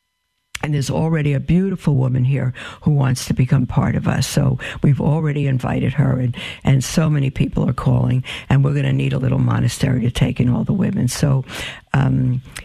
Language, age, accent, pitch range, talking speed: English, 60-79, American, 130-160 Hz, 200 wpm